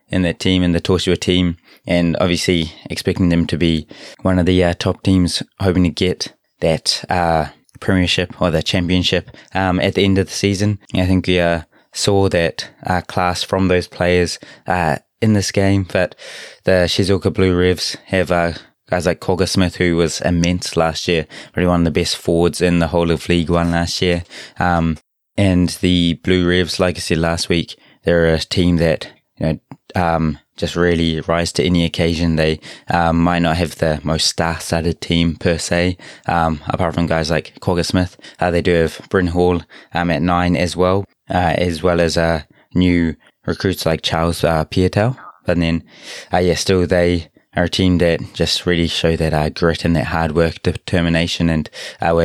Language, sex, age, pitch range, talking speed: English, male, 20-39, 85-90 Hz, 195 wpm